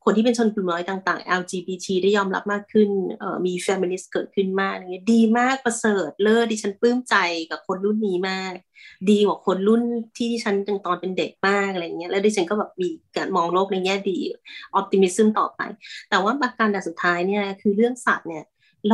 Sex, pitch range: female, 190-235 Hz